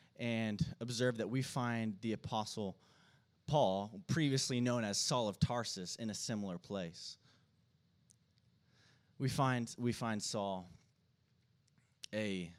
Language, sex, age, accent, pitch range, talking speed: English, male, 20-39, American, 100-130 Hz, 110 wpm